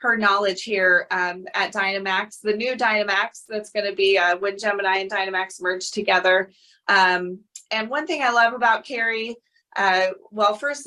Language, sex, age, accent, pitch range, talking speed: English, female, 20-39, American, 195-230 Hz, 165 wpm